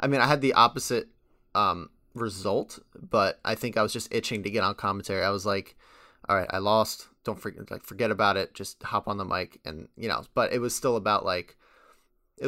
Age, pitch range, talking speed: 20-39, 100-115 Hz, 225 wpm